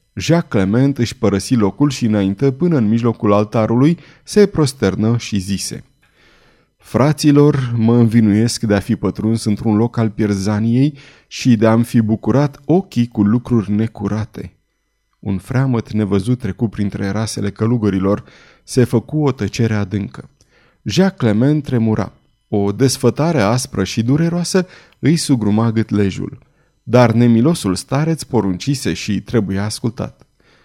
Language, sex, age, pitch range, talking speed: Romanian, male, 30-49, 110-160 Hz, 125 wpm